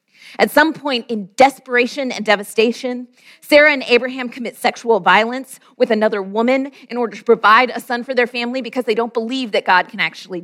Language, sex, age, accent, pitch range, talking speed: English, female, 40-59, American, 220-270 Hz, 190 wpm